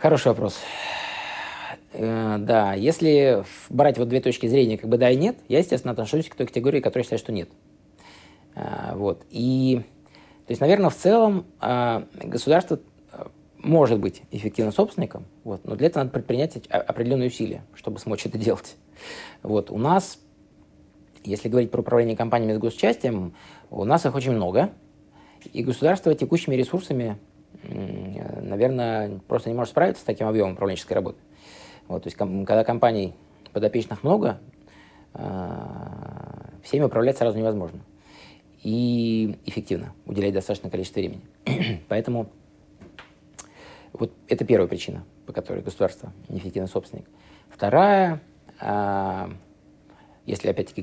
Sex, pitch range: male, 100-130 Hz